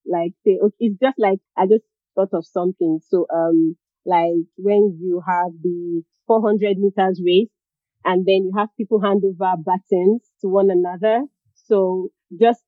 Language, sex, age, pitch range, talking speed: English, female, 30-49, 175-205 Hz, 150 wpm